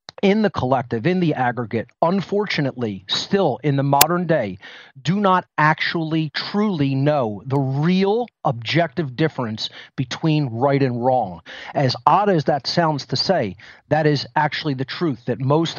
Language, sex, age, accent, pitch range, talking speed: English, male, 40-59, American, 130-160 Hz, 150 wpm